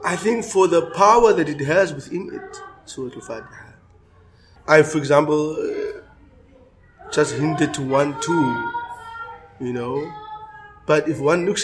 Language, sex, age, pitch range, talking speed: English, male, 30-49, 130-180 Hz, 135 wpm